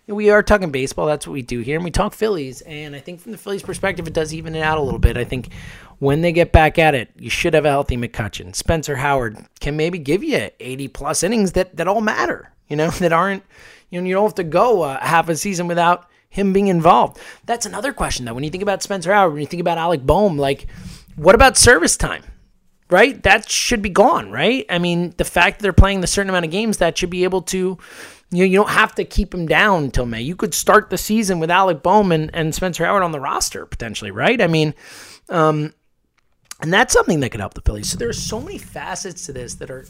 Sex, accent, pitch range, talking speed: male, American, 145-185 Hz, 250 wpm